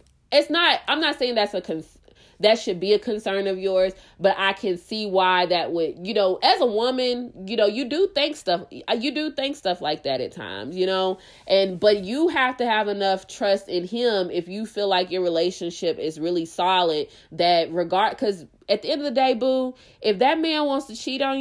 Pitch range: 185-260 Hz